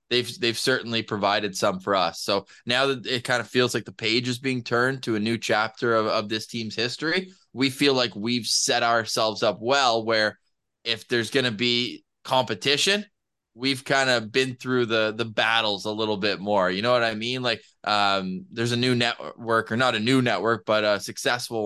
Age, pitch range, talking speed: 20-39, 115-145 Hz, 205 wpm